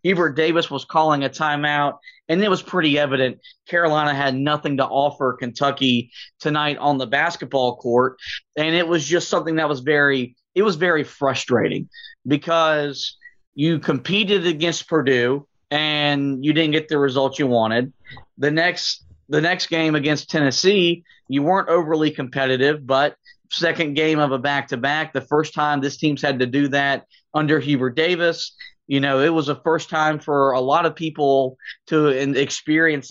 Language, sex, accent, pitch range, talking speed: English, male, American, 140-165 Hz, 165 wpm